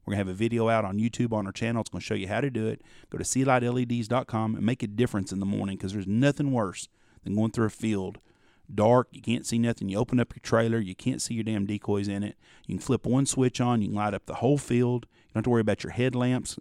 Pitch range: 105-135 Hz